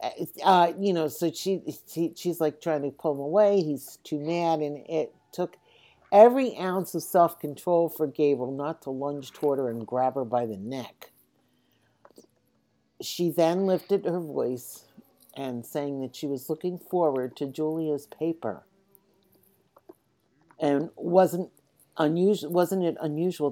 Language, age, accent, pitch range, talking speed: English, 60-79, American, 145-185 Hz, 145 wpm